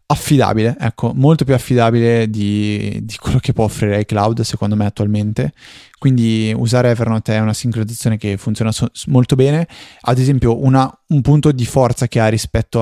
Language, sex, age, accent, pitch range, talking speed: Italian, male, 20-39, native, 105-130 Hz, 175 wpm